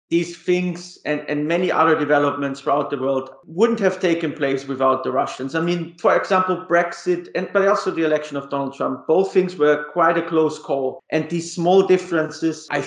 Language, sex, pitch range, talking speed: English, male, 140-175 Hz, 190 wpm